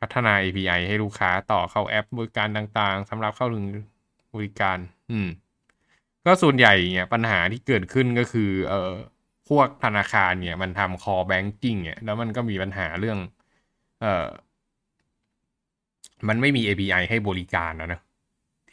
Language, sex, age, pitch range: Thai, male, 20-39, 95-110 Hz